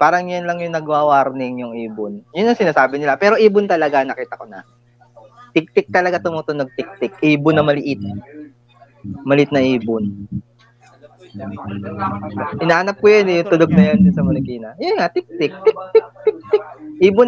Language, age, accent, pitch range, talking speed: Filipino, 20-39, native, 125-200 Hz, 145 wpm